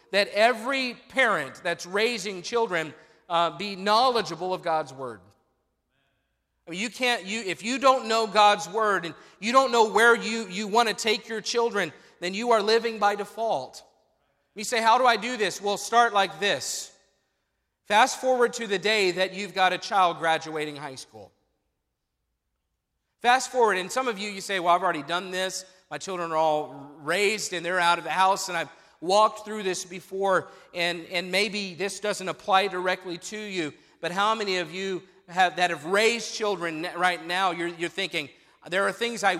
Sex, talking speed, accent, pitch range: male, 185 wpm, American, 165-215 Hz